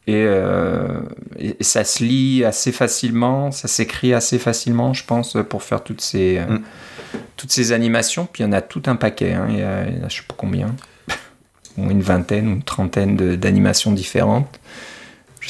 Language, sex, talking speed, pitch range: French, male, 200 wpm, 100-120 Hz